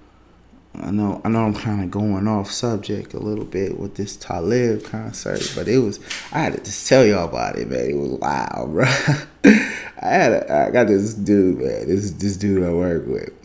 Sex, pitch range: male, 85-105 Hz